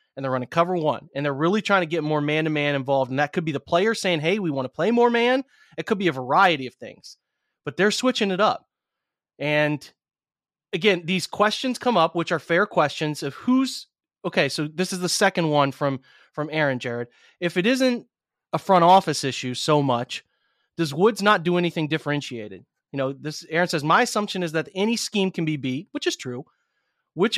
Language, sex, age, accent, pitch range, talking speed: English, male, 30-49, American, 145-195 Hz, 215 wpm